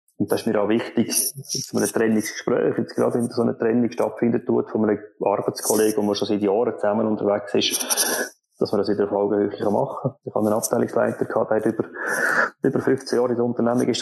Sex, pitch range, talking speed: male, 105-120 Hz, 220 wpm